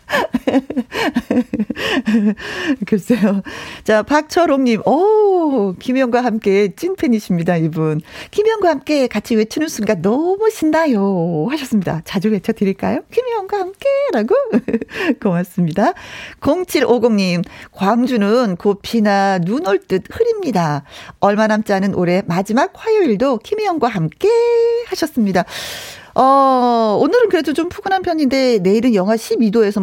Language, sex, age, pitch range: Korean, female, 40-59, 180-270 Hz